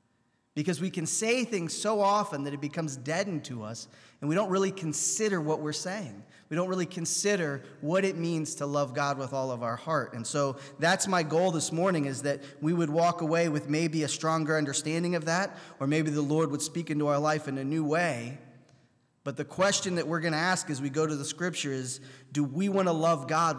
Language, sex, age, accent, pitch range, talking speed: English, male, 20-39, American, 135-165 Hz, 230 wpm